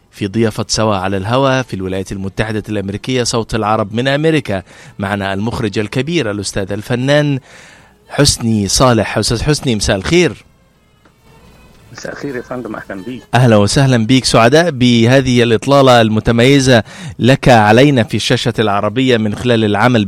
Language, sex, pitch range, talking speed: Arabic, male, 110-140 Hz, 115 wpm